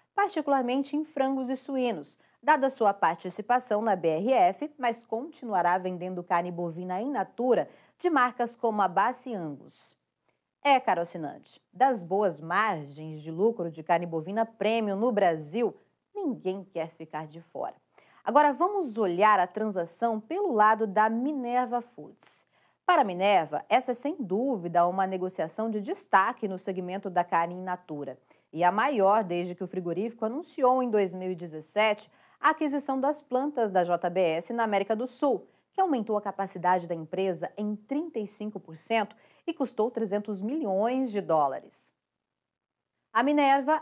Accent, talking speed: Brazilian, 140 wpm